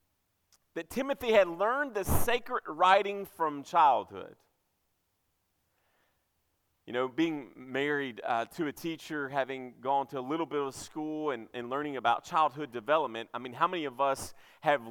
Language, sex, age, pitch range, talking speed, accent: English, male, 30-49, 150-250 Hz, 155 wpm, American